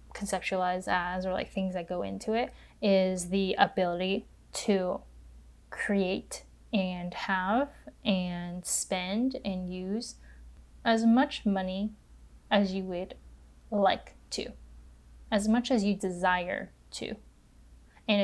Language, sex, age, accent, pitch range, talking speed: English, female, 10-29, American, 185-215 Hz, 115 wpm